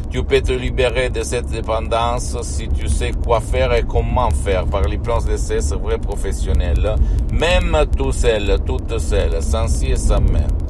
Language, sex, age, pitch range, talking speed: Italian, male, 60-79, 75-100 Hz, 180 wpm